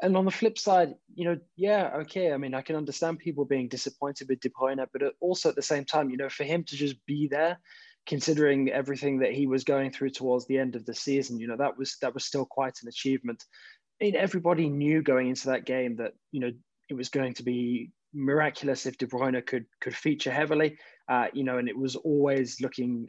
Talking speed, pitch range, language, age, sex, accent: 230 wpm, 125-145 Hz, English, 20-39, male, British